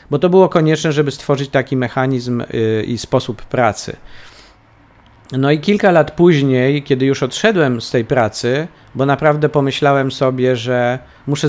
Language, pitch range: Polish, 120-145 Hz